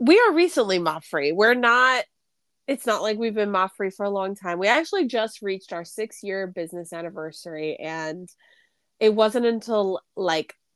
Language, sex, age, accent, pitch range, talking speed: English, female, 20-39, American, 185-235 Hz, 180 wpm